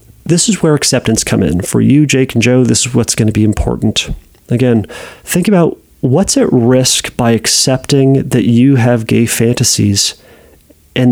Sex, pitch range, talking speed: male, 105-150 Hz, 175 wpm